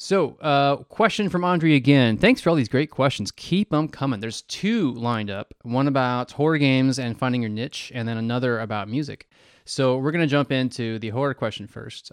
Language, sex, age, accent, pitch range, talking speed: English, male, 20-39, American, 115-145 Hz, 210 wpm